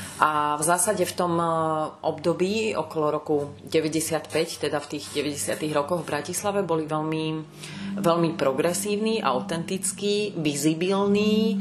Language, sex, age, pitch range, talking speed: Czech, female, 30-49, 150-185 Hz, 115 wpm